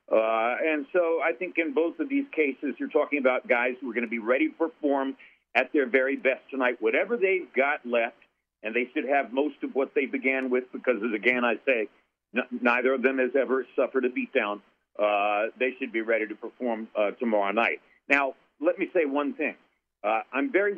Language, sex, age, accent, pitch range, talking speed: English, male, 60-79, American, 120-145 Hz, 215 wpm